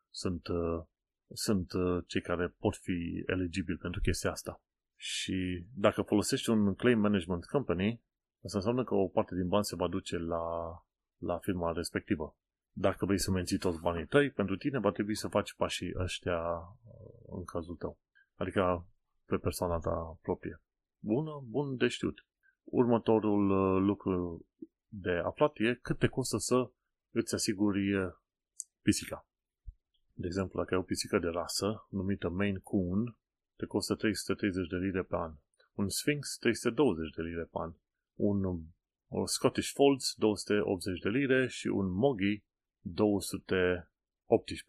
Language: Romanian